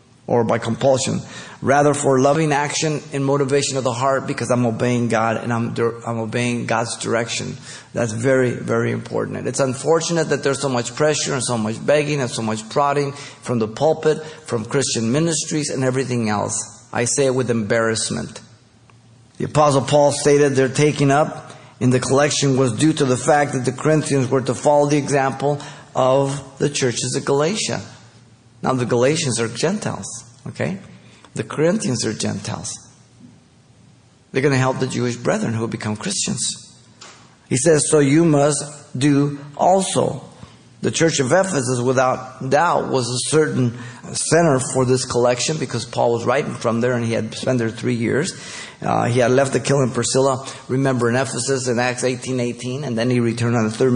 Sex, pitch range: male, 120-140 Hz